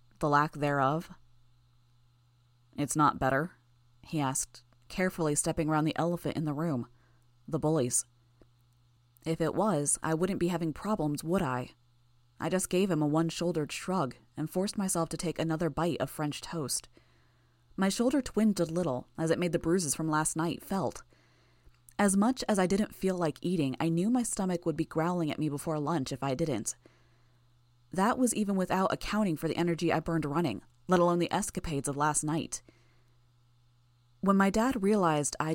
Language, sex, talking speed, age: English, female, 175 wpm, 20-39